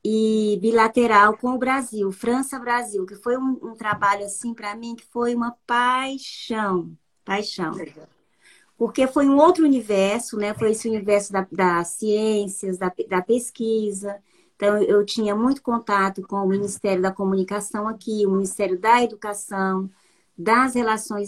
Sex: female